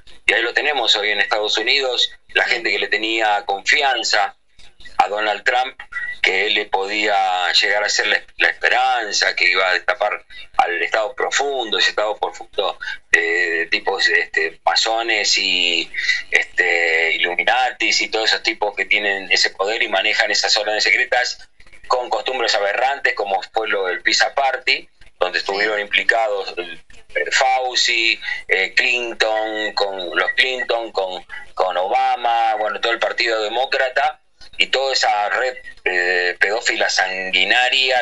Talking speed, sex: 140 wpm, male